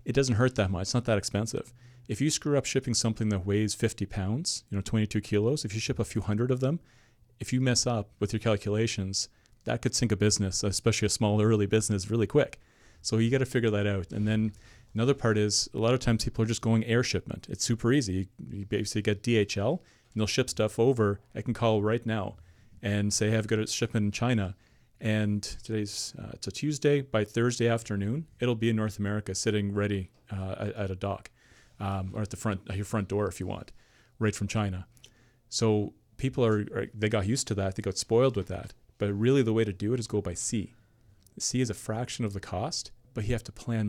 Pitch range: 105-120 Hz